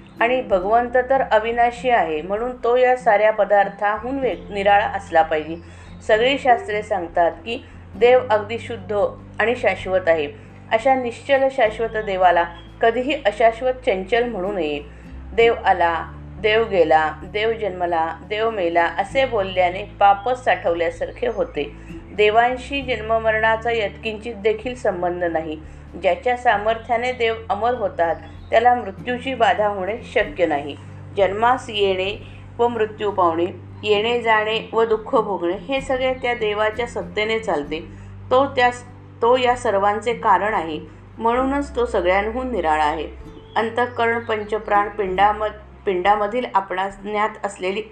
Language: Marathi